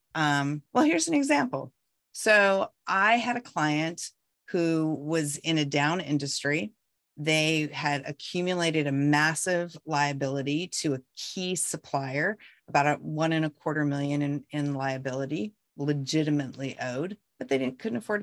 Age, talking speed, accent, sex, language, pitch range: 40-59, 140 wpm, American, female, English, 140-170 Hz